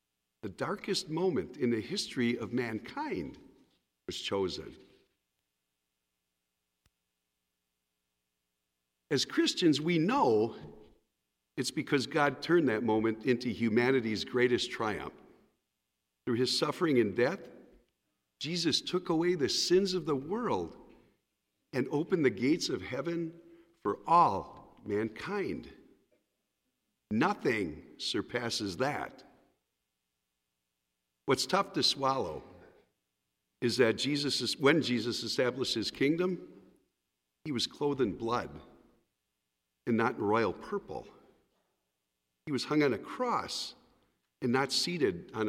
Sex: male